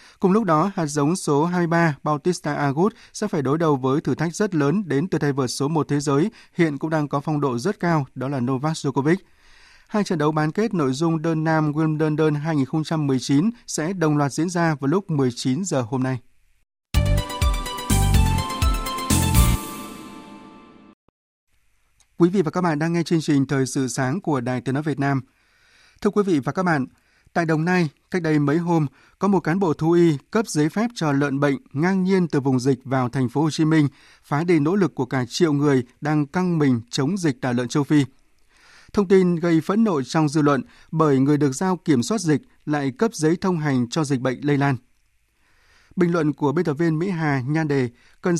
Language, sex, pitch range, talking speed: Vietnamese, male, 135-170 Hz, 210 wpm